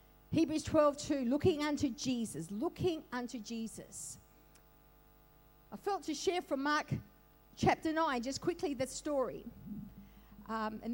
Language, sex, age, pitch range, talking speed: English, female, 50-69, 225-320 Hz, 125 wpm